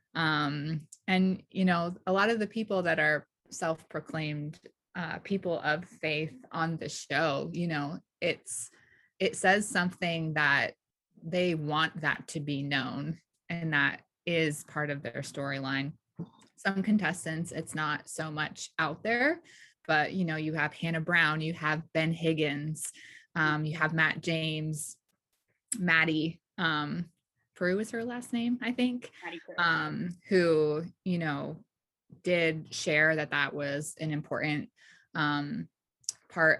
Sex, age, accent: female, 20-39, American